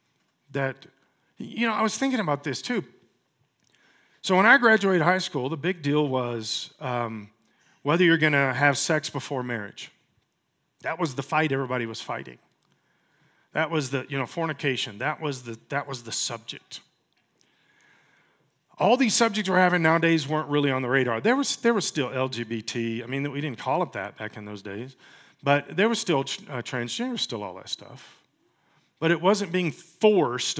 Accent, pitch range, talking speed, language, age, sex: American, 140-220 Hz, 180 wpm, English, 40-59, male